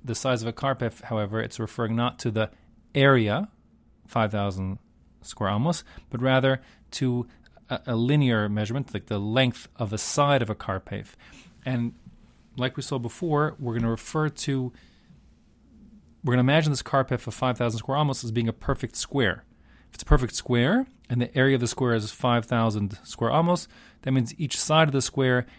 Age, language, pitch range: 40-59, English, 110-140 Hz